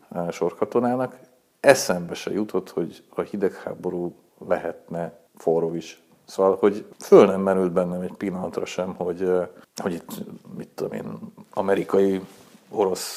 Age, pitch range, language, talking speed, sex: 50-69, 95-115 Hz, Hungarian, 130 wpm, male